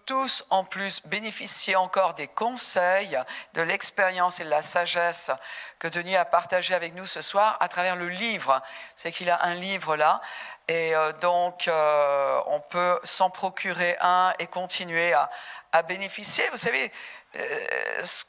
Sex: female